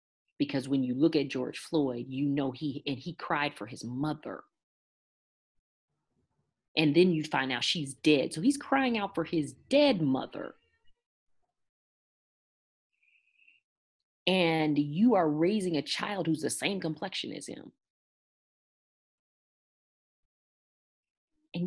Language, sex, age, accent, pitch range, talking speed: English, female, 40-59, American, 155-235 Hz, 120 wpm